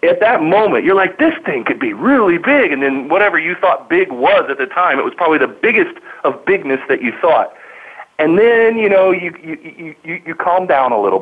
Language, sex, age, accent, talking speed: English, male, 40-59, American, 230 wpm